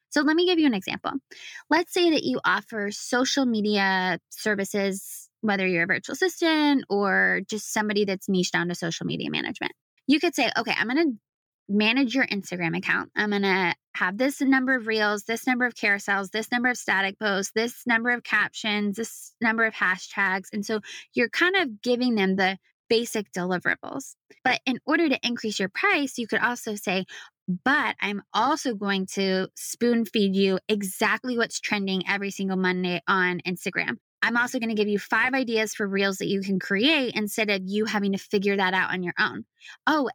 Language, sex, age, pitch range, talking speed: English, female, 20-39, 195-245 Hz, 195 wpm